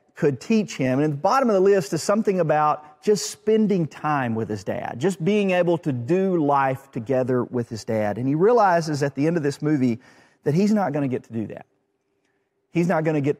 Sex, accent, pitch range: male, American, 130-175 Hz